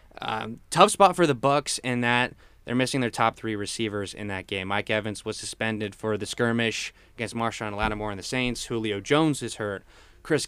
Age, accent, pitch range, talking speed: 20-39, American, 110-135 Hz, 200 wpm